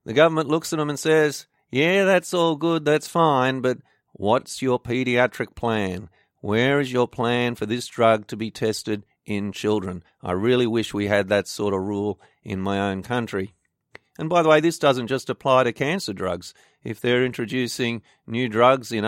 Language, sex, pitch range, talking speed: English, male, 105-130 Hz, 190 wpm